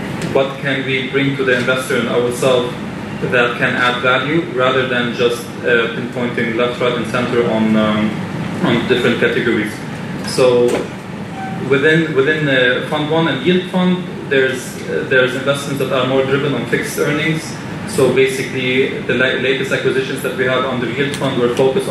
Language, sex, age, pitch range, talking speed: English, male, 20-39, 125-150 Hz, 170 wpm